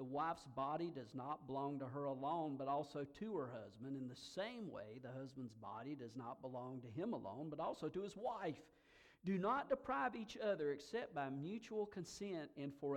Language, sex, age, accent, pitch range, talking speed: English, male, 50-69, American, 135-195 Hz, 200 wpm